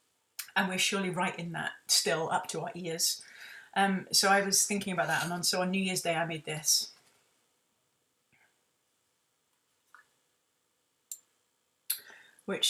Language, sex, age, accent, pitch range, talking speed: English, female, 30-49, British, 165-215 Hz, 130 wpm